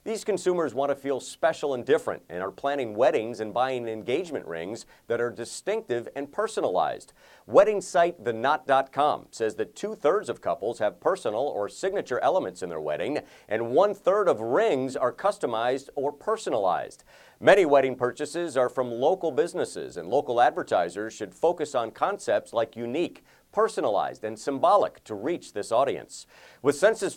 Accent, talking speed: American, 155 wpm